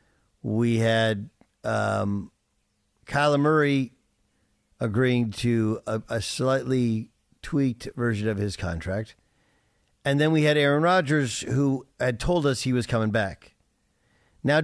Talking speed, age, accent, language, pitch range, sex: 125 wpm, 50-69, American, English, 110-135 Hz, male